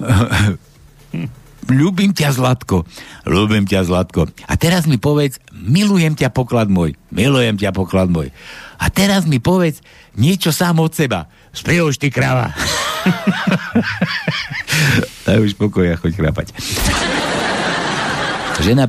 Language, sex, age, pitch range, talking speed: Slovak, male, 60-79, 100-150 Hz, 115 wpm